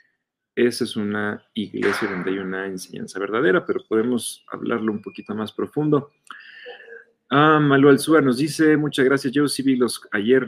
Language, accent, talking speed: Spanish, Mexican, 165 wpm